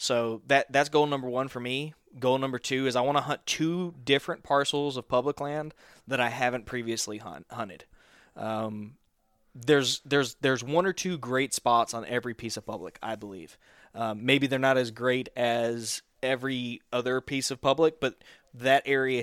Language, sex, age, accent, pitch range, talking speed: English, male, 20-39, American, 120-135 Hz, 185 wpm